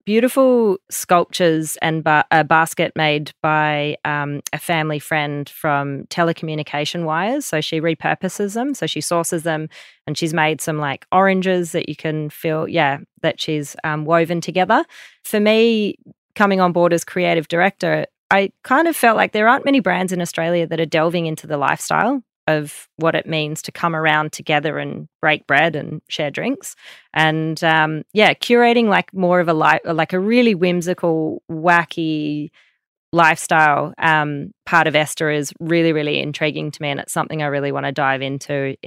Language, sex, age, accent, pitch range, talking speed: English, female, 30-49, Australian, 150-180 Hz, 170 wpm